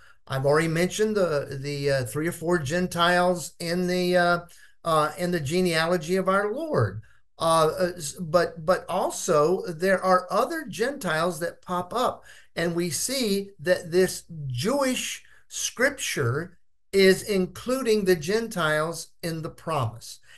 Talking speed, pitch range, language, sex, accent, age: 135 wpm, 145-190 Hz, English, male, American, 50-69